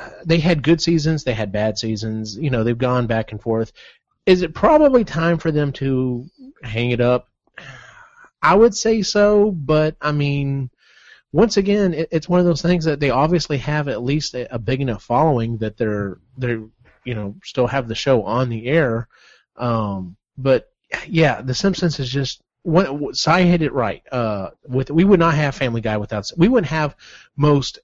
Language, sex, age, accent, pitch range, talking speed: English, male, 30-49, American, 115-150 Hz, 185 wpm